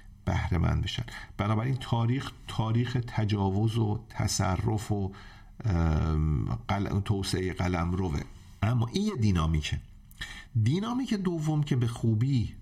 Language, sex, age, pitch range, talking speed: Persian, male, 50-69, 95-120 Hz, 100 wpm